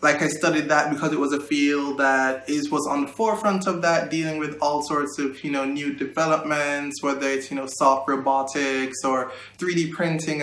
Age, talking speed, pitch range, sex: 20-39, 200 wpm, 135-155 Hz, male